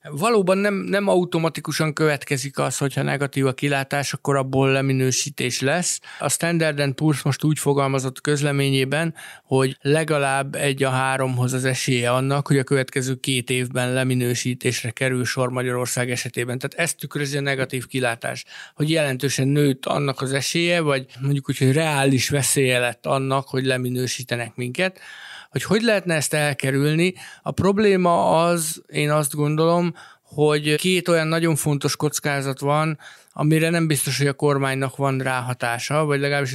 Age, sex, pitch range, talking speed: 60-79, male, 130-155 Hz, 150 wpm